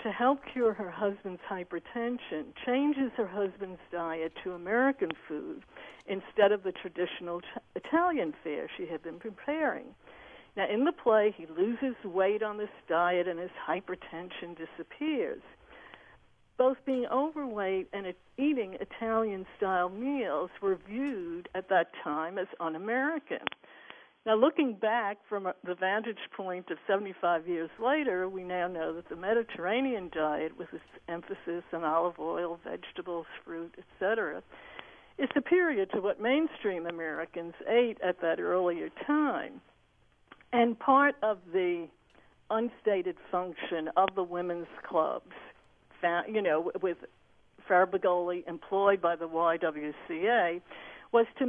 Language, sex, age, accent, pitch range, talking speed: English, female, 60-79, American, 175-235 Hz, 130 wpm